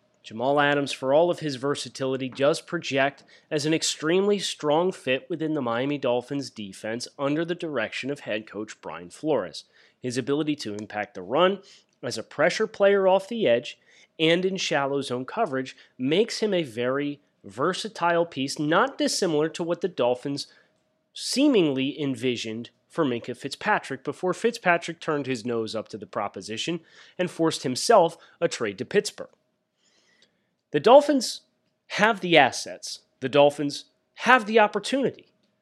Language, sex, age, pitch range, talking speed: English, male, 30-49, 130-190 Hz, 150 wpm